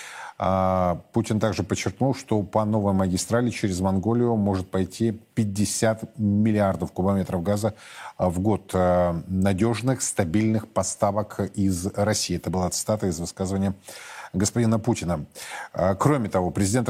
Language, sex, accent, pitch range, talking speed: Russian, male, native, 100-115 Hz, 115 wpm